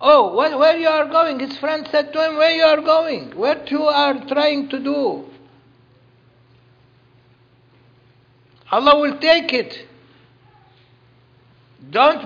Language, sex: English, male